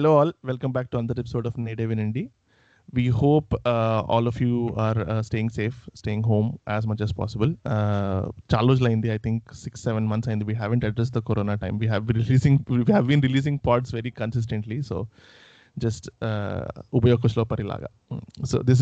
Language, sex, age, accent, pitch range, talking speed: Telugu, male, 30-49, native, 110-130 Hz, 195 wpm